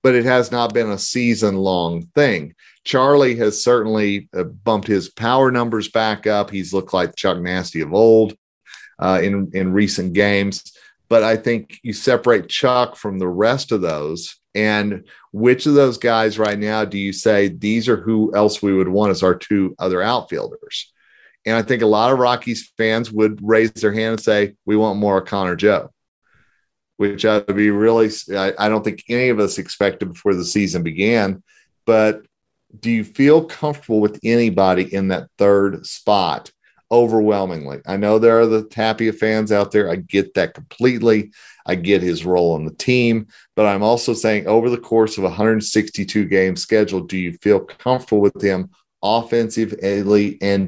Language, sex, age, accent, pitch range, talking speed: English, male, 40-59, American, 95-115 Hz, 175 wpm